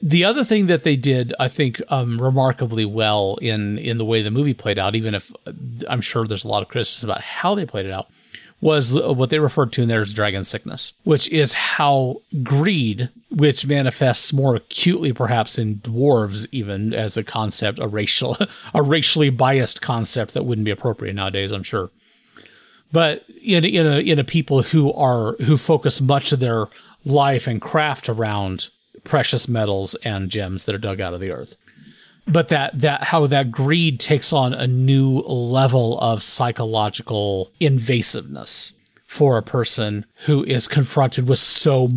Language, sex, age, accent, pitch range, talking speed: English, male, 40-59, American, 110-145 Hz, 175 wpm